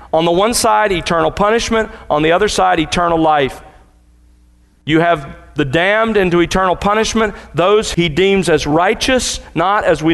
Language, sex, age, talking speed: English, male, 40-59, 160 wpm